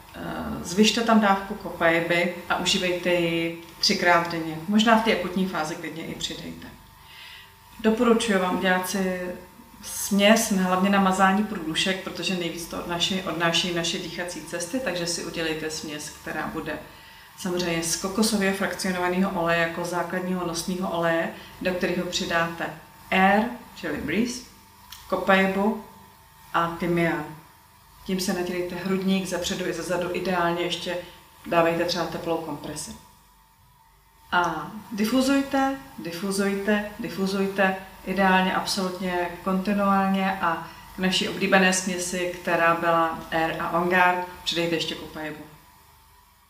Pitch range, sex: 170-195 Hz, female